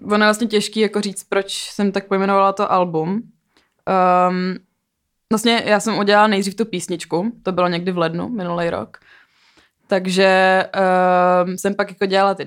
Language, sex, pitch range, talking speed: Czech, female, 185-205 Hz, 165 wpm